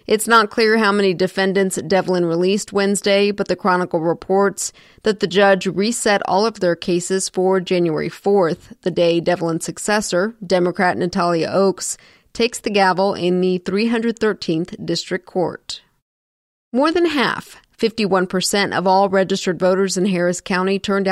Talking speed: 150 wpm